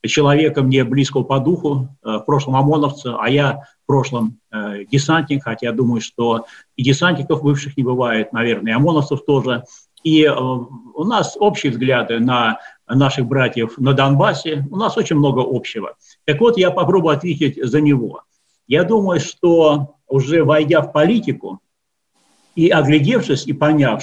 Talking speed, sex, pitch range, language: 145 wpm, male, 130-170 Hz, Russian